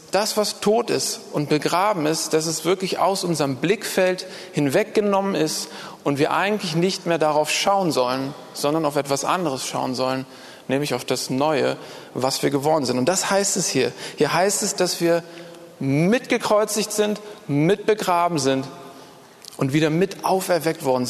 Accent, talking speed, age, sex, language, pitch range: German, 160 wpm, 40-59, male, German, 145-190 Hz